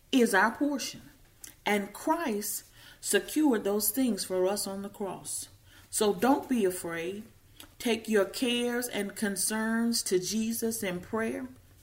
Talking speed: 130 wpm